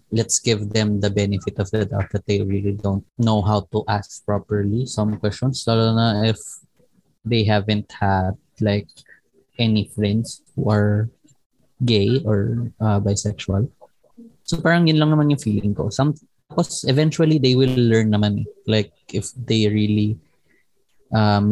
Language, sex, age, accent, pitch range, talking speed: Filipino, male, 20-39, native, 105-130 Hz, 150 wpm